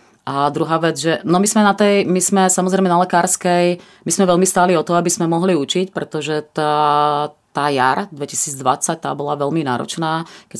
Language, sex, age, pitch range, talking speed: Czech, female, 30-49, 150-180 Hz, 185 wpm